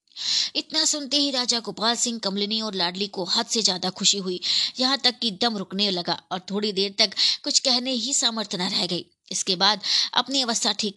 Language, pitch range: Hindi, 195-250 Hz